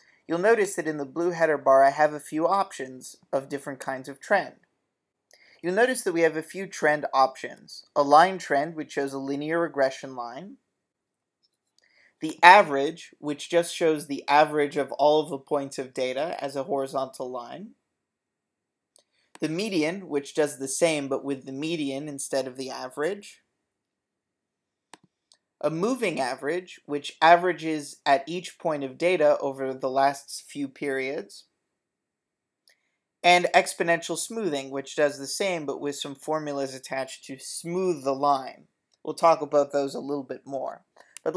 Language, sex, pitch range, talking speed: English, male, 140-170 Hz, 155 wpm